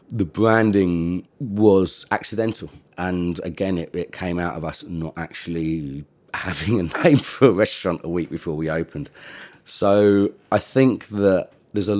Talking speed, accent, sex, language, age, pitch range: 155 wpm, British, male, English, 30-49, 80-100 Hz